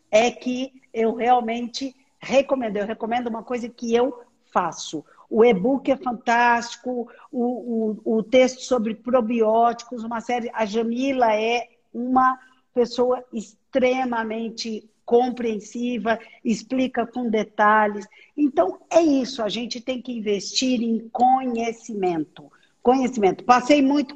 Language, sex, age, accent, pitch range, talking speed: Portuguese, female, 50-69, Brazilian, 220-255 Hz, 115 wpm